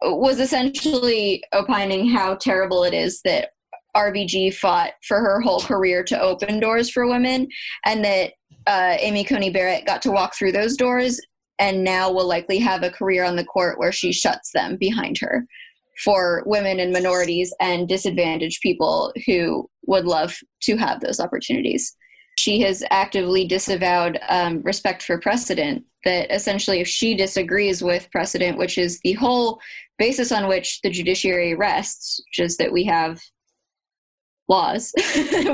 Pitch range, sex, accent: 180-240 Hz, female, American